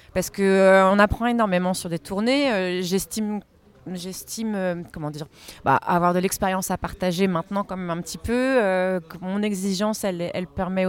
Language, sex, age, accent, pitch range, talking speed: French, female, 30-49, French, 170-205 Hz, 180 wpm